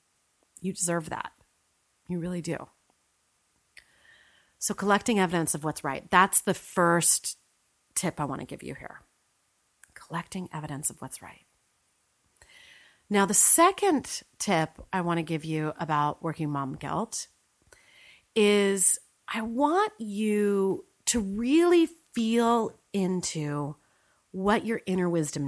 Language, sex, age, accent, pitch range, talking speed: English, female, 30-49, American, 160-205 Hz, 120 wpm